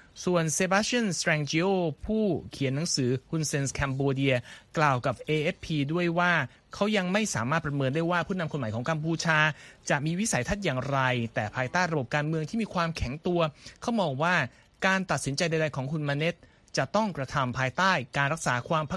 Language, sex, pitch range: Thai, male, 130-175 Hz